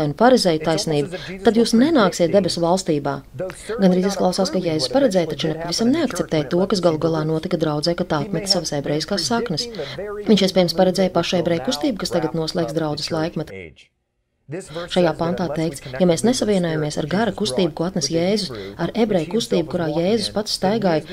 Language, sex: Russian, female